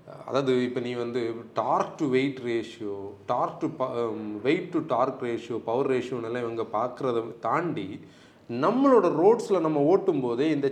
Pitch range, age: 125-200 Hz, 30-49